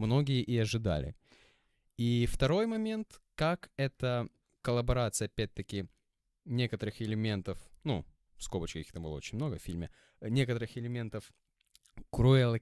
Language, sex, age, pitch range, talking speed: Ukrainian, male, 20-39, 100-125 Hz, 115 wpm